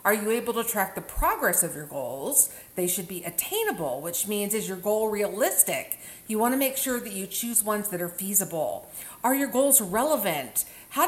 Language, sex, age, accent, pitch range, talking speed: English, female, 40-59, American, 180-250 Hz, 200 wpm